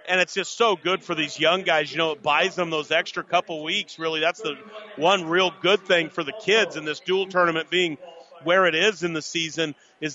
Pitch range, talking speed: 155-190 Hz, 235 wpm